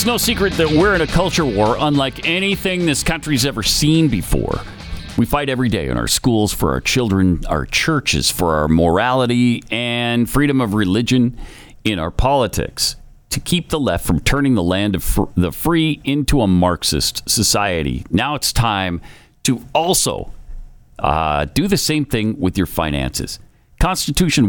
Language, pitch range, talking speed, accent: English, 95-155 Hz, 165 wpm, American